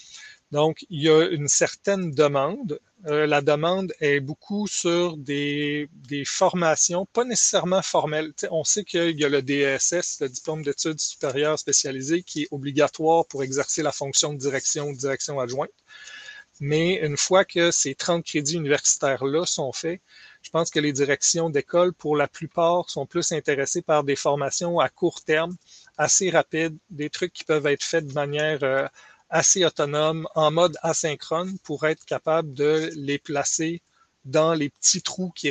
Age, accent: 30-49, Canadian